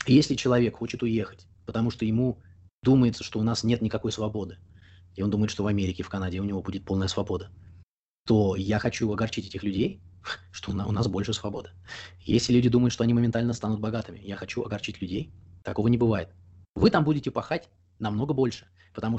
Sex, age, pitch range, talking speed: male, 20-39, 95-120 Hz, 190 wpm